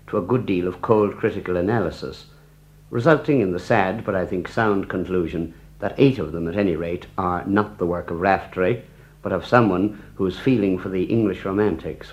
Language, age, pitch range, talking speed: English, 60-79, 90-130 Hz, 190 wpm